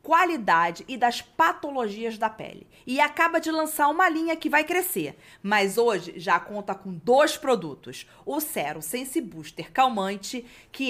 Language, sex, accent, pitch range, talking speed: Portuguese, female, Brazilian, 190-270 Hz, 155 wpm